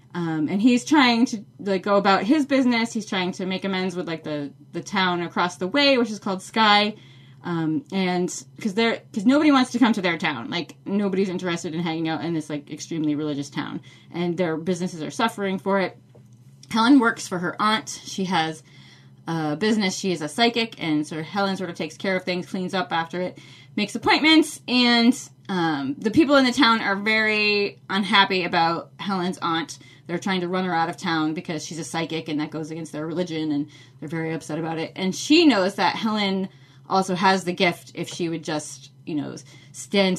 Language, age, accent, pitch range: English, 20-39, American, 155-220 Hz